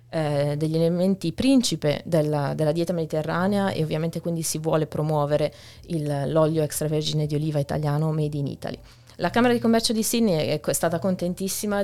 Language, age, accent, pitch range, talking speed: Italian, 20-39, native, 150-180 Hz, 150 wpm